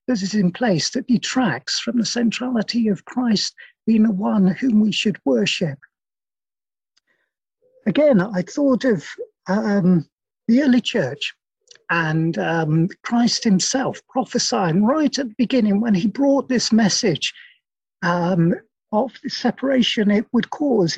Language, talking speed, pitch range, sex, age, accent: English, 130 wpm, 195-255 Hz, male, 50-69, British